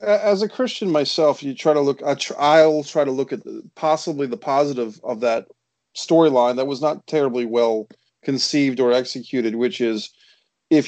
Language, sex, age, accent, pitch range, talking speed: English, male, 40-59, American, 125-155 Hz, 165 wpm